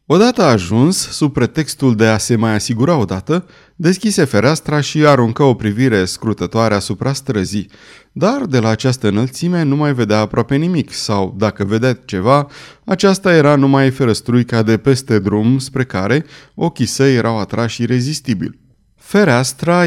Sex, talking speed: male, 145 wpm